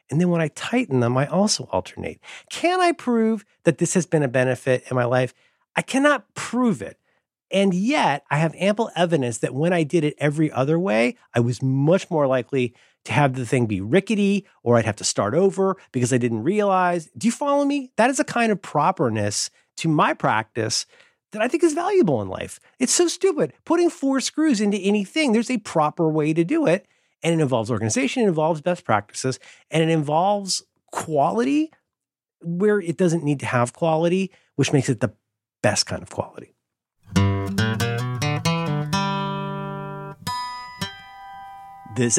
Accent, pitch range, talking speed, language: American, 130-200 Hz, 175 wpm, English